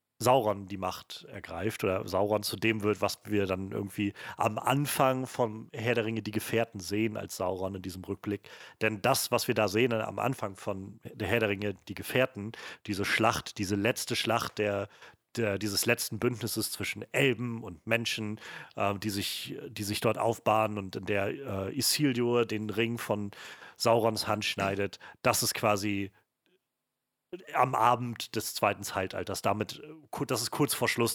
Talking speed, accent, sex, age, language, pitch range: 170 wpm, German, male, 40-59, German, 105-120 Hz